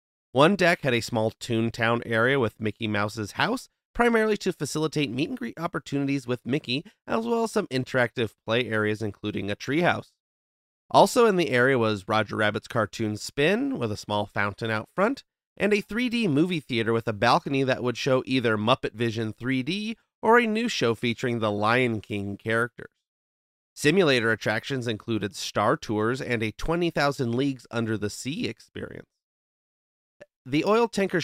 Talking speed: 160 wpm